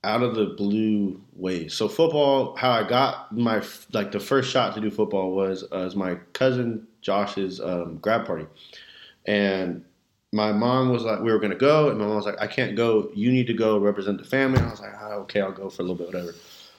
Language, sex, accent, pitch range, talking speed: English, male, American, 100-125 Hz, 230 wpm